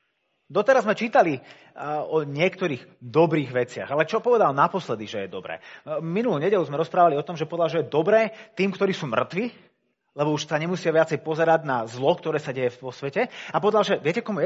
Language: Slovak